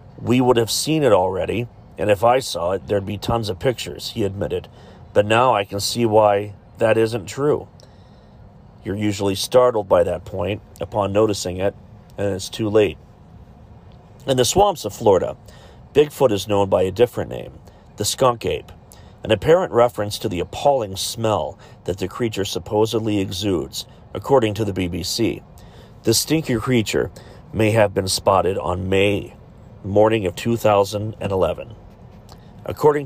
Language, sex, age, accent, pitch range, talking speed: English, male, 40-59, American, 100-120 Hz, 150 wpm